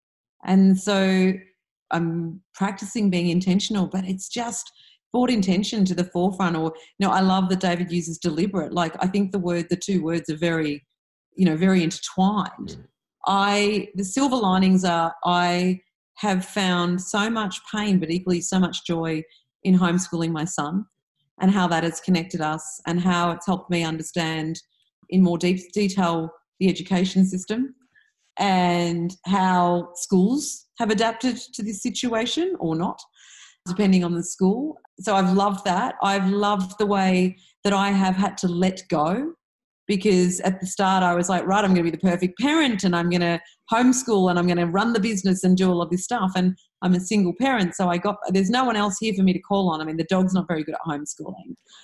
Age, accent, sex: 40-59, Australian, female